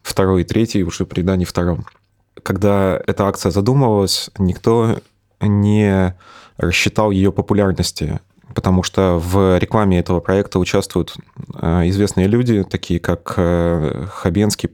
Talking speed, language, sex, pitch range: 115 wpm, Russian, male, 90-105 Hz